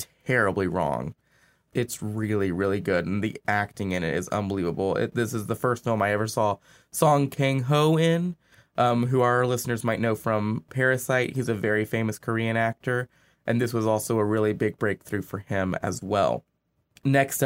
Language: English